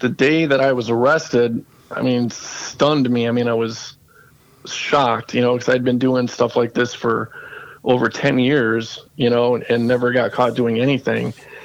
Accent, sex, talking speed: American, male, 190 wpm